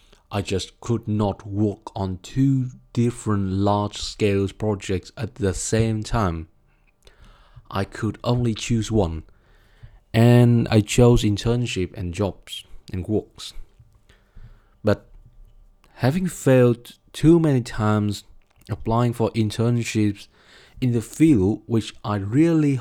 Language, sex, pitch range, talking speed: Vietnamese, male, 100-120 Hz, 110 wpm